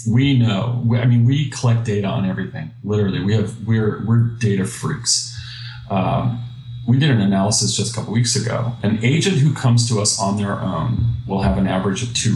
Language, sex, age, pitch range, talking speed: English, male, 40-59, 105-125 Hz, 200 wpm